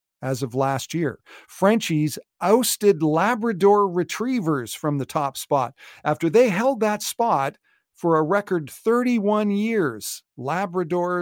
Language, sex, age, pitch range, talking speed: English, male, 50-69, 130-180 Hz, 125 wpm